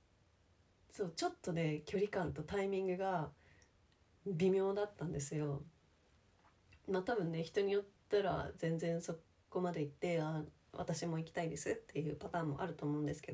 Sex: female